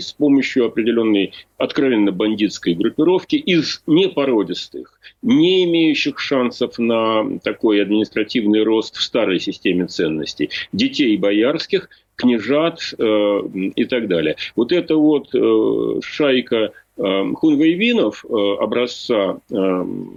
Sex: male